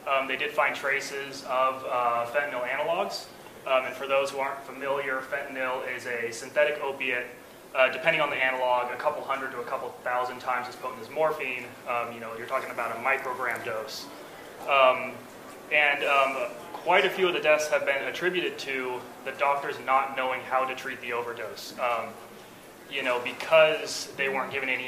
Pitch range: 125-140 Hz